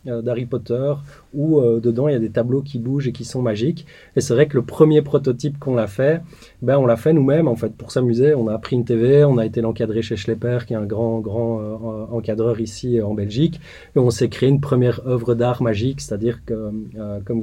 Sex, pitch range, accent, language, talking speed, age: male, 115-135 Hz, French, French, 240 wpm, 20-39